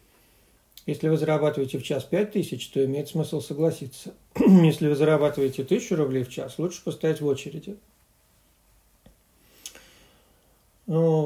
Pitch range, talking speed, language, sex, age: 140-165 Hz, 125 wpm, Russian, male, 50-69